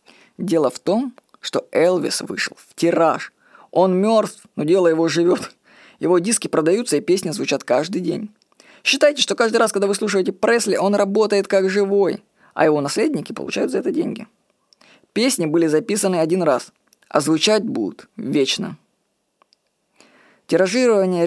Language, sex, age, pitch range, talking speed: Russian, female, 20-39, 170-230 Hz, 145 wpm